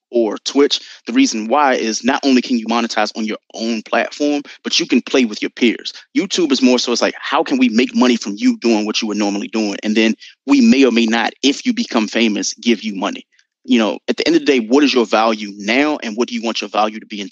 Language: English